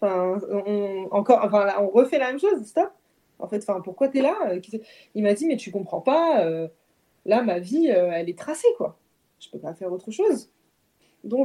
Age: 20-39